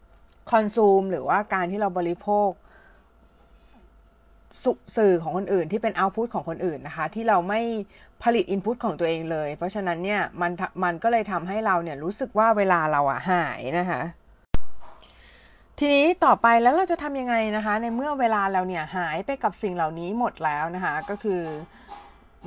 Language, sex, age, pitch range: Thai, female, 30-49, 175-225 Hz